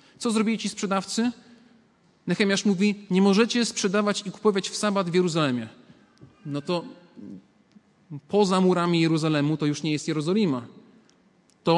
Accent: native